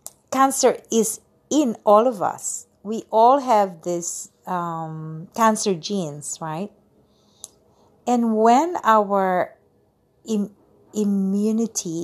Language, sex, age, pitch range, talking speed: English, female, 50-69, 175-225 Hz, 95 wpm